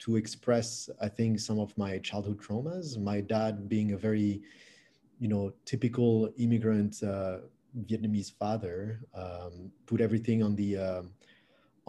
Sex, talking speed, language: male, 135 wpm, English